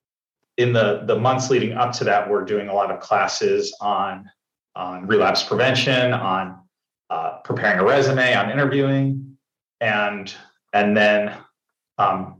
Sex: male